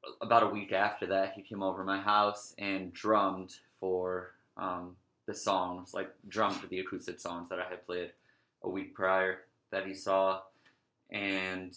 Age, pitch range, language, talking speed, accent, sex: 20-39, 90-100 Hz, English, 175 wpm, American, male